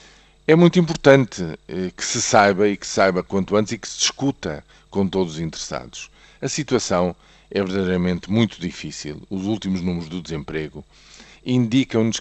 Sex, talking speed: male, 155 wpm